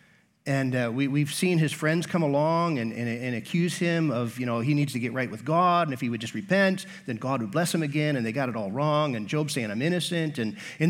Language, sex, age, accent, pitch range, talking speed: English, male, 50-69, American, 120-155 Hz, 270 wpm